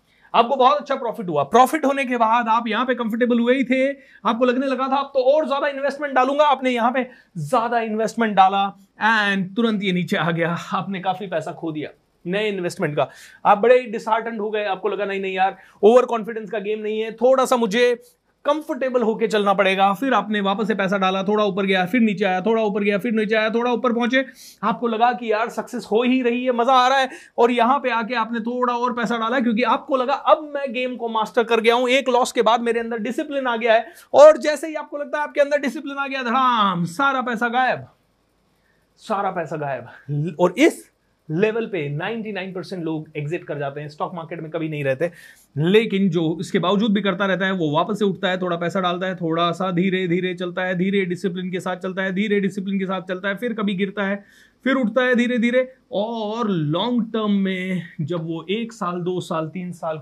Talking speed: 185 wpm